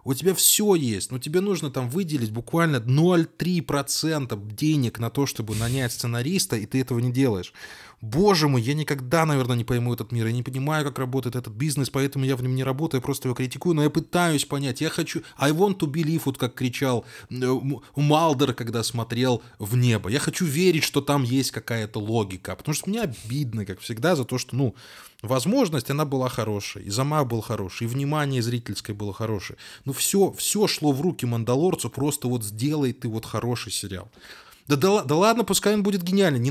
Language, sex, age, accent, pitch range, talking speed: Russian, male, 20-39, native, 125-195 Hz, 195 wpm